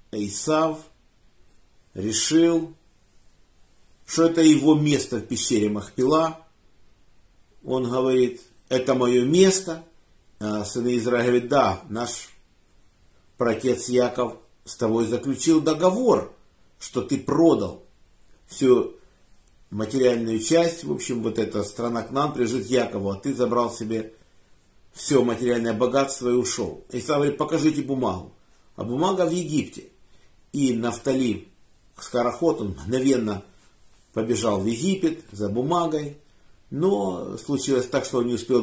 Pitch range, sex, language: 110-150 Hz, male, Russian